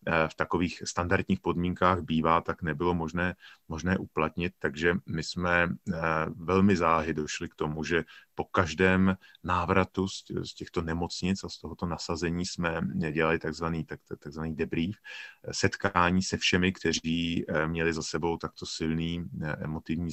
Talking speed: 130 wpm